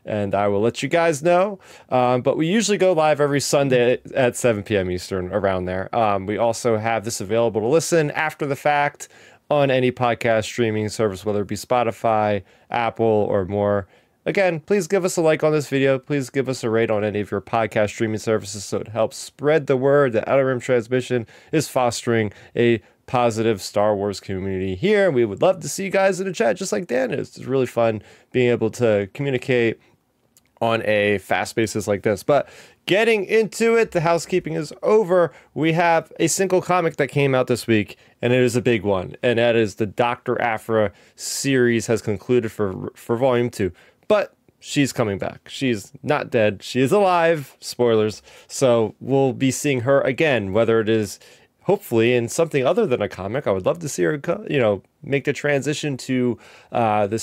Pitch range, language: 110-145 Hz, English